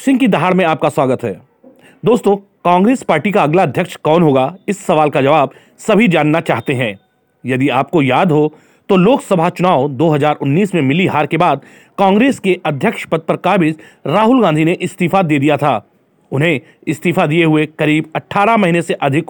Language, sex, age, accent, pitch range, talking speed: Hindi, male, 40-59, native, 150-190 Hz, 180 wpm